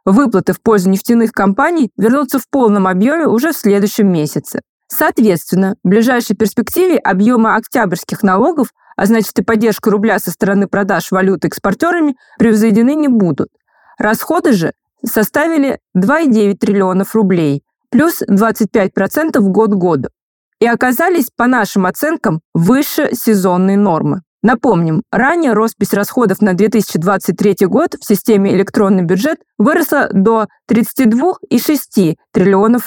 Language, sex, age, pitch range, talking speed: Russian, female, 20-39, 195-255 Hz, 120 wpm